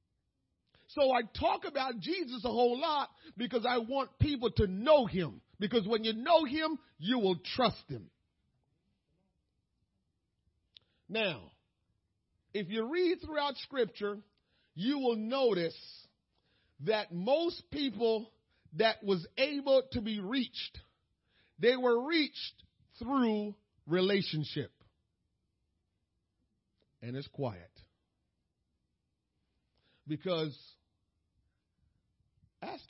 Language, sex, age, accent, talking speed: English, male, 40-59, American, 95 wpm